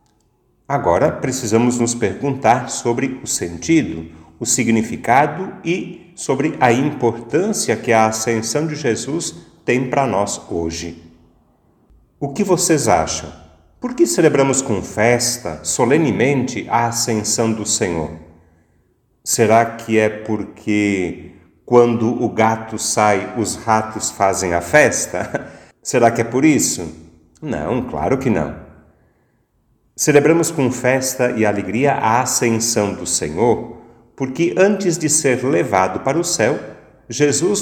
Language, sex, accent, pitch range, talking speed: Portuguese, male, Brazilian, 100-140 Hz, 120 wpm